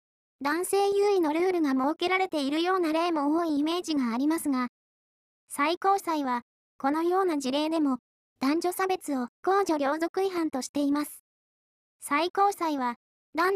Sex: male